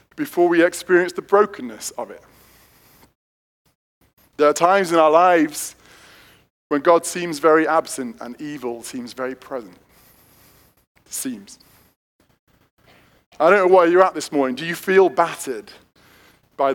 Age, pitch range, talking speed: 20-39, 130-165 Hz, 135 wpm